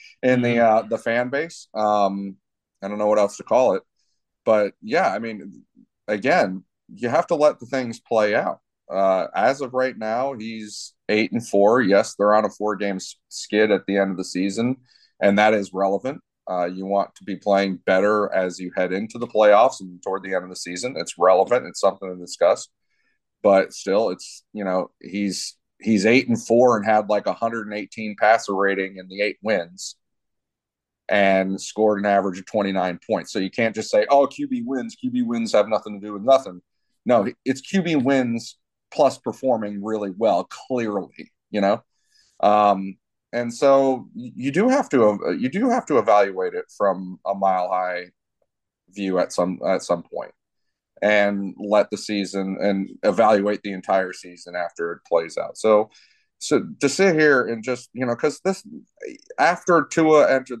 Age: 30-49